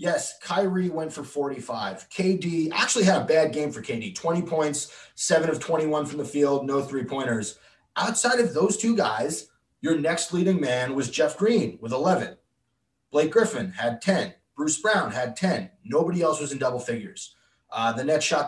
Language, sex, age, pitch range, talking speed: English, male, 20-39, 130-175 Hz, 180 wpm